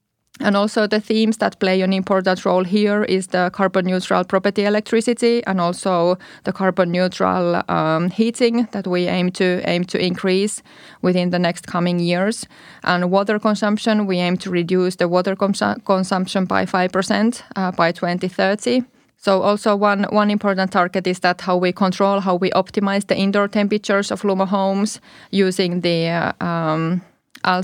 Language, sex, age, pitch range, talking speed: Finnish, female, 20-39, 180-200 Hz, 165 wpm